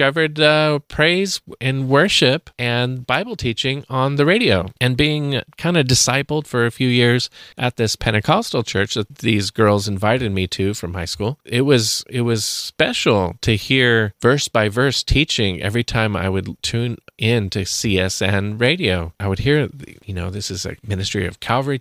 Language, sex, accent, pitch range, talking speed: English, male, American, 100-125 Hz, 170 wpm